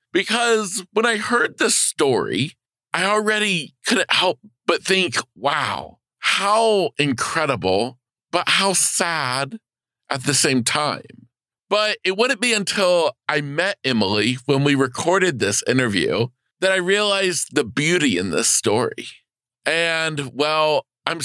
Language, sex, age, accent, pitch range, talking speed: English, male, 40-59, American, 130-175 Hz, 130 wpm